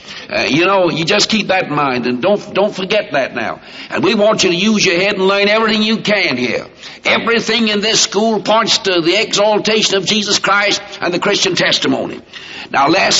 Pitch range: 160-195 Hz